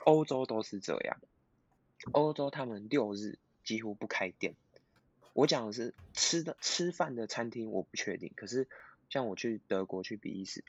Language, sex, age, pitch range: Chinese, male, 20-39, 100-120 Hz